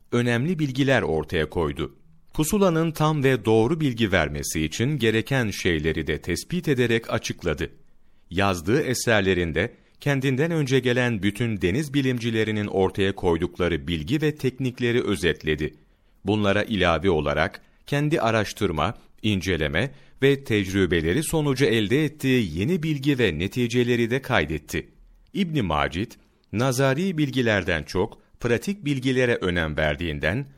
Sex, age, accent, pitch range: male, 40-59, native, 90-135 Hz